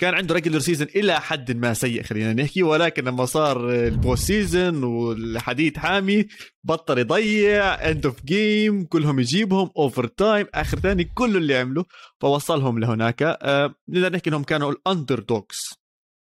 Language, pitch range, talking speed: Arabic, 125-180 Hz, 145 wpm